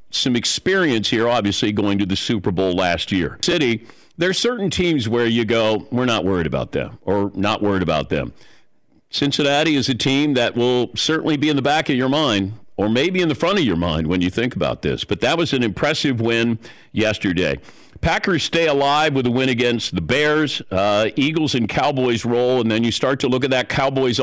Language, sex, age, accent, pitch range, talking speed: English, male, 50-69, American, 110-150 Hz, 215 wpm